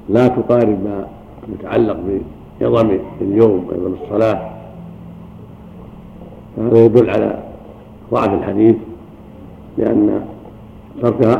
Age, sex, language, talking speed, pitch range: 60-79, male, Arabic, 80 wpm, 110-130 Hz